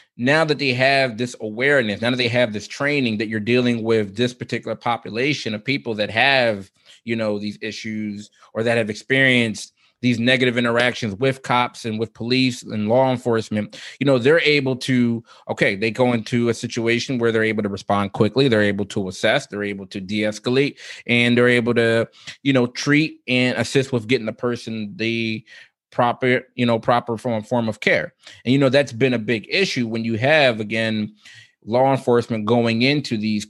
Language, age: English, 20-39